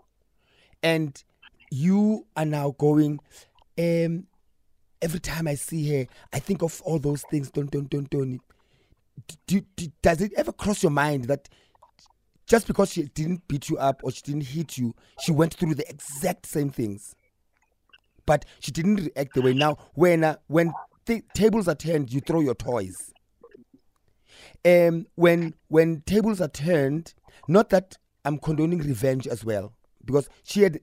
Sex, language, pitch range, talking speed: male, English, 125-165 Hz, 165 wpm